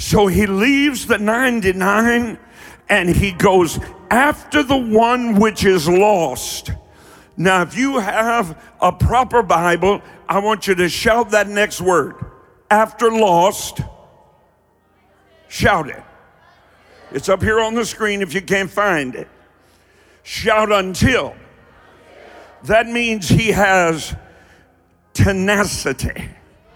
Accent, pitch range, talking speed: American, 190-240 Hz, 115 wpm